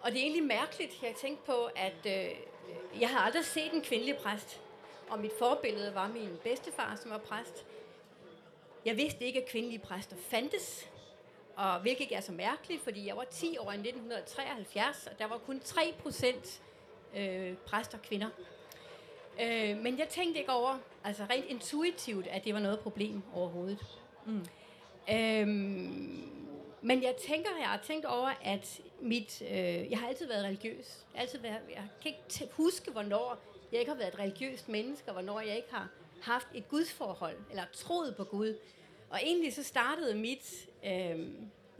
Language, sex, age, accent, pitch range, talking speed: Danish, female, 30-49, native, 205-290 Hz, 170 wpm